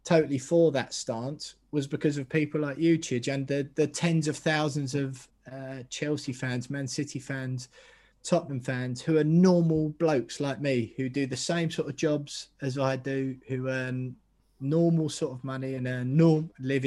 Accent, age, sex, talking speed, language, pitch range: British, 20-39, male, 185 wpm, English, 125-150 Hz